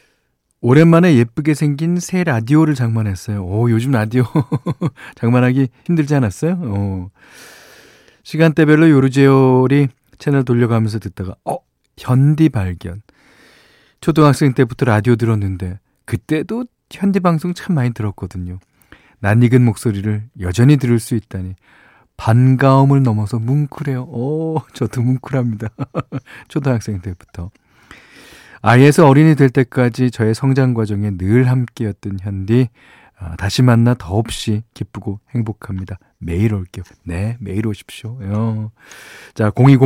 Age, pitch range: 40-59, 105-140 Hz